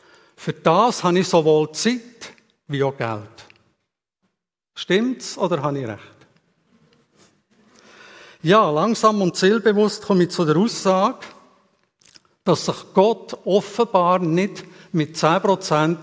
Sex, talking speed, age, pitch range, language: male, 110 wpm, 60-79, 150-200 Hz, German